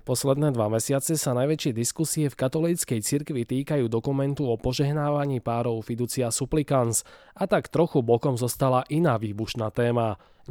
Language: Slovak